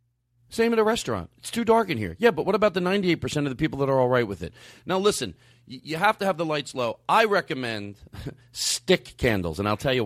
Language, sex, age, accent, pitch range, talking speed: English, male, 40-59, American, 120-170 Hz, 245 wpm